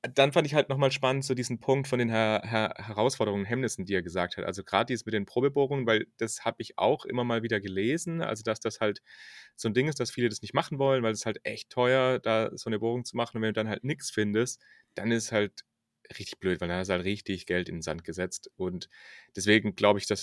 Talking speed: 260 wpm